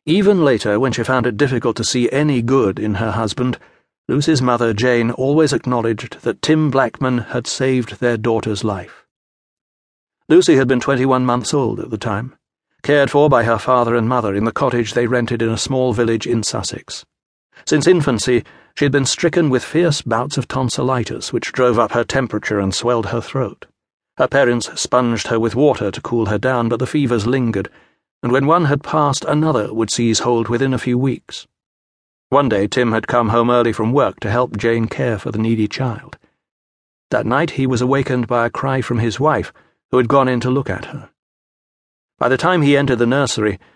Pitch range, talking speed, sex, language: 115-135 Hz, 195 wpm, male, English